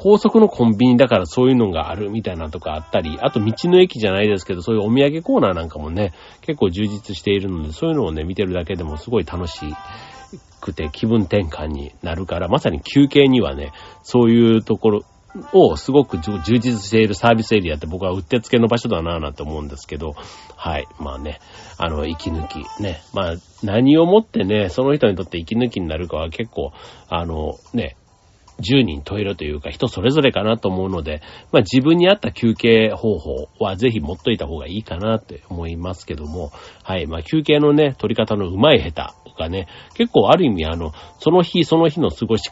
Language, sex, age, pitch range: Japanese, male, 40-59, 85-125 Hz